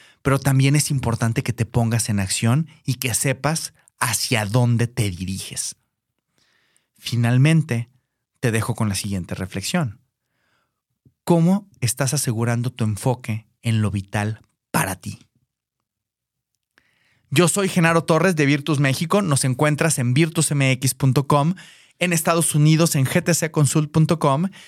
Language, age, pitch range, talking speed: Spanish, 30-49, 130-170 Hz, 120 wpm